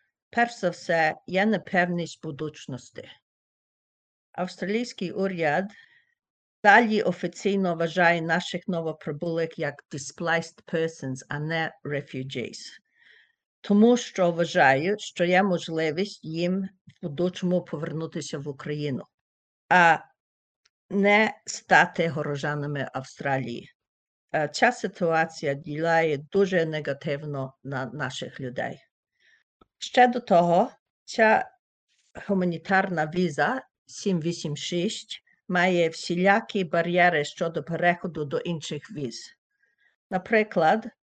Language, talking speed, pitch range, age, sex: Ukrainian, 90 wpm, 160-195 Hz, 50-69, female